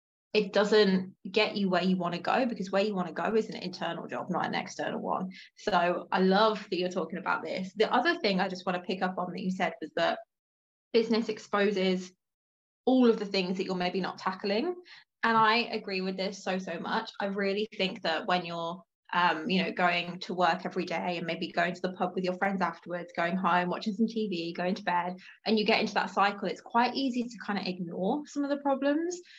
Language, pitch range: English, 180-220 Hz